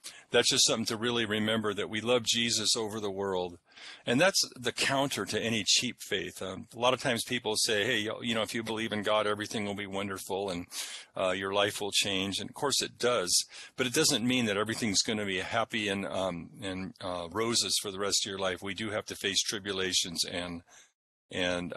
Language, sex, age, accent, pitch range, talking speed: English, male, 50-69, American, 100-120 Hz, 220 wpm